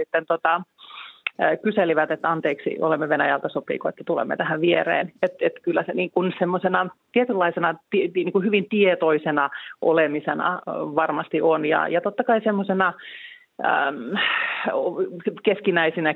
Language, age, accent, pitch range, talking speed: Finnish, 30-49, native, 150-190 Hz, 125 wpm